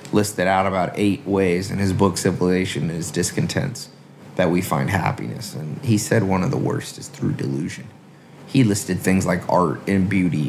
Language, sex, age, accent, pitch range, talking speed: English, male, 30-49, American, 90-110 Hz, 190 wpm